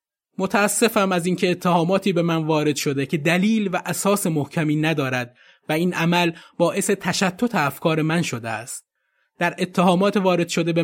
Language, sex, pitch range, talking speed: Persian, male, 140-185 Hz, 155 wpm